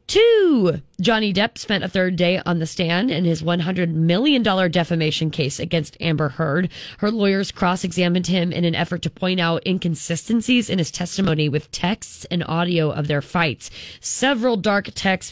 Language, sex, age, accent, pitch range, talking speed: English, female, 20-39, American, 155-190 Hz, 170 wpm